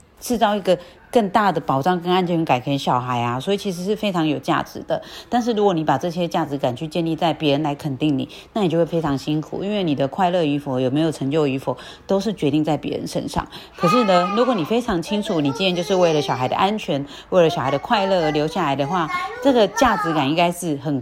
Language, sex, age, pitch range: Chinese, female, 30-49, 150-200 Hz